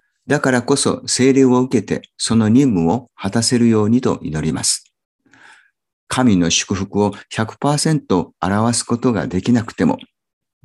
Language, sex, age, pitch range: Japanese, male, 50-69, 95-130 Hz